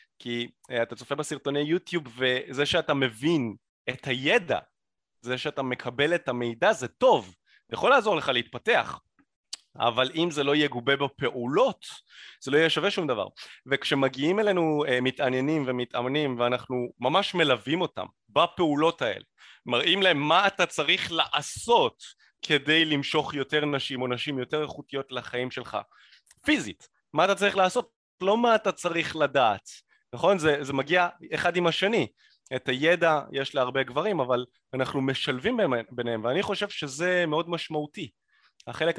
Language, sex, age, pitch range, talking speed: Hebrew, male, 30-49, 120-155 Hz, 140 wpm